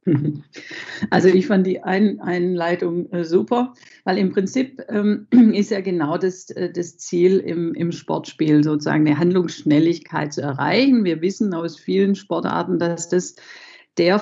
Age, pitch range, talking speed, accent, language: 50-69, 160-200 Hz, 130 wpm, German, German